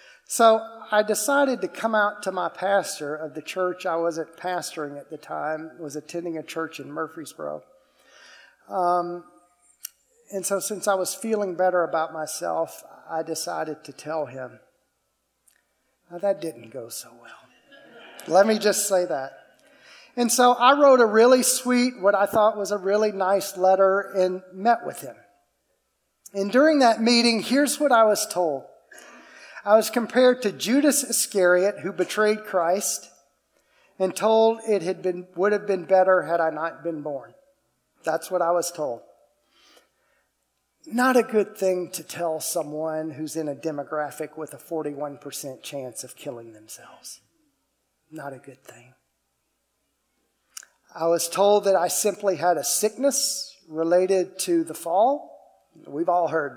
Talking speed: 150 wpm